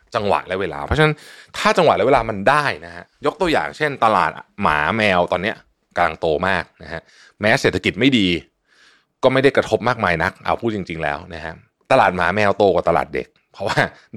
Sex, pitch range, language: male, 90-140 Hz, Thai